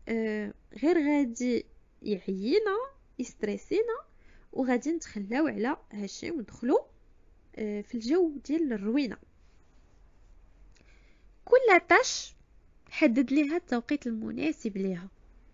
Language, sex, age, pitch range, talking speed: Arabic, female, 20-39, 200-280 Hz, 75 wpm